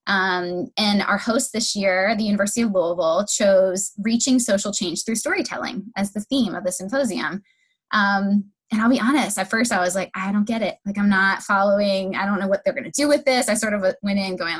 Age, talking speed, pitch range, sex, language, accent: 20-39, 230 wpm, 190-230 Hz, female, English, American